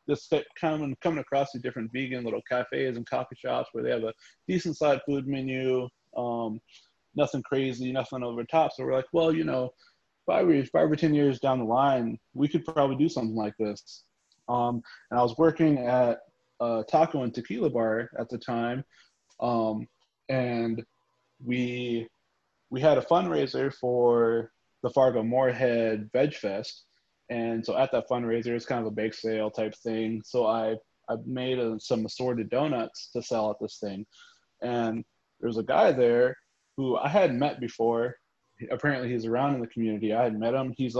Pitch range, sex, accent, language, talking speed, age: 110-130 Hz, male, American, English, 175 wpm, 20-39